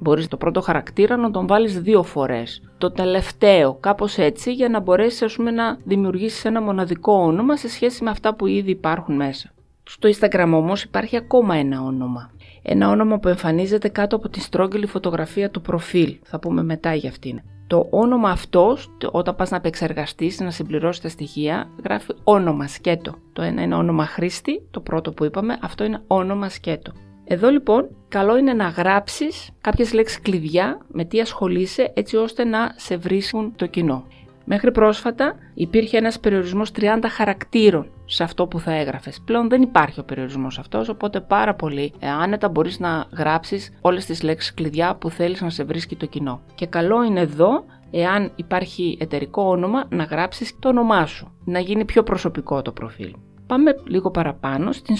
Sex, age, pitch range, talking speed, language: female, 30-49, 155-215 Hz, 170 wpm, Greek